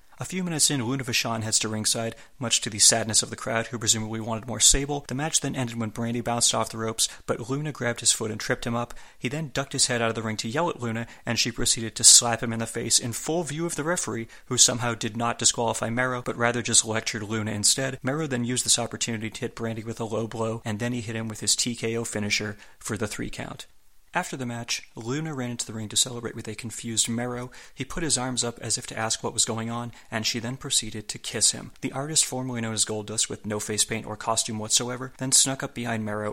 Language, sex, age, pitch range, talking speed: English, male, 30-49, 110-125 Hz, 260 wpm